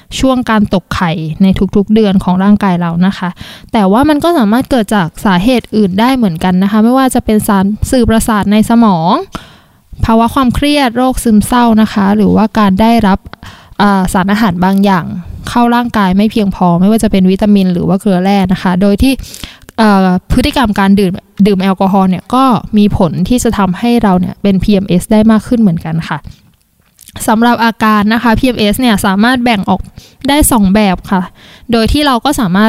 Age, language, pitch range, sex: 20-39, Thai, 195-235 Hz, female